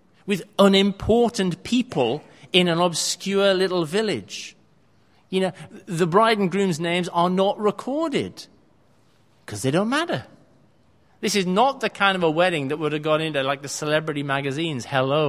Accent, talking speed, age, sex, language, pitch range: British, 155 wpm, 40-59, male, English, 150-195 Hz